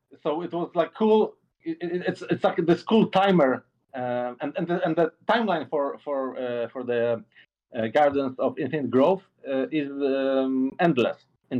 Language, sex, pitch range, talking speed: English, male, 135-185 Hz, 195 wpm